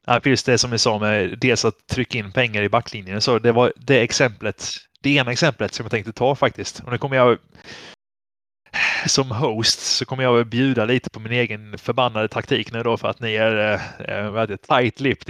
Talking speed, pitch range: 210 wpm, 110-130 Hz